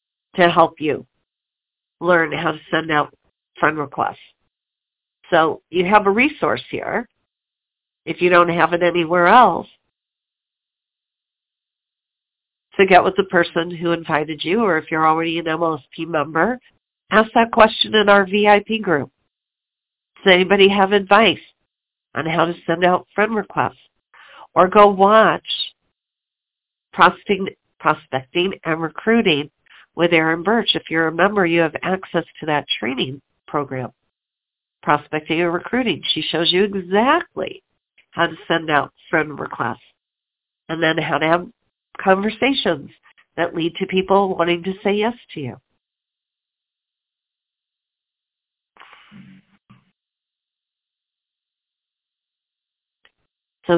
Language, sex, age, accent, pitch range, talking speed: English, female, 50-69, American, 160-200 Hz, 120 wpm